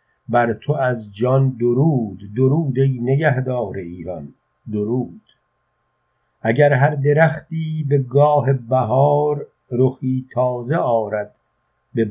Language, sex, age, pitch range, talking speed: Persian, male, 50-69, 115-135 Hz, 100 wpm